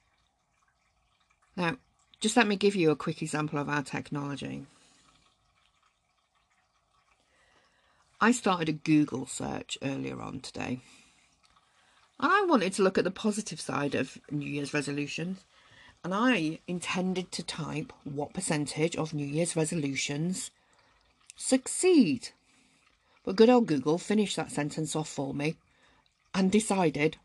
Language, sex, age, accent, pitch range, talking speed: English, female, 50-69, British, 145-200 Hz, 125 wpm